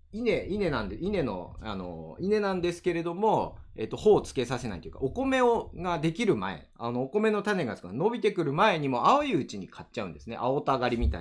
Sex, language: male, Japanese